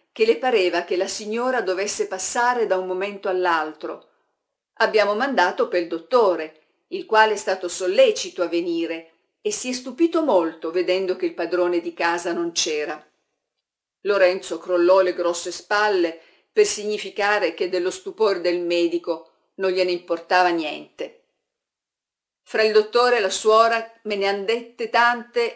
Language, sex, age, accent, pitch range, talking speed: Italian, female, 50-69, native, 180-245 Hz, 150 wpm